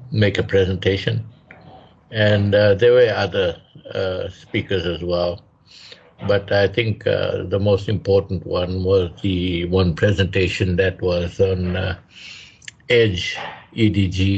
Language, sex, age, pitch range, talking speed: English, male, 60-79, 90-110 Hz, 135 wpm